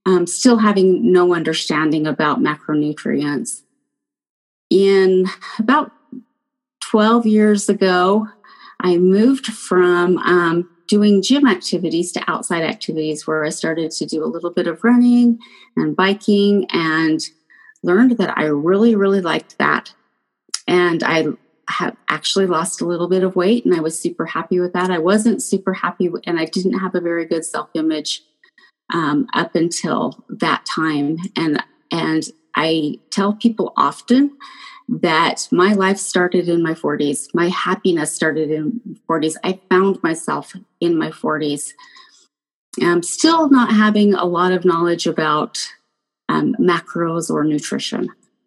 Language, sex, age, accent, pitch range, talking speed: English, female, 30-49, American, 165-220 Hz, 140 wpm